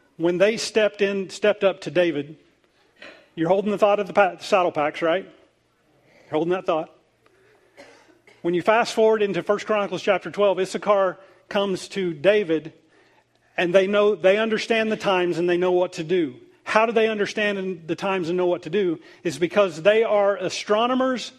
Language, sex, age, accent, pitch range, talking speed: English, male, 40-59, American, 185-230 Hz, 175 wpm